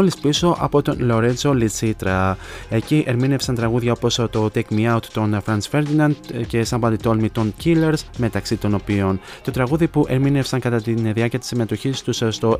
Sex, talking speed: male, 170 wpm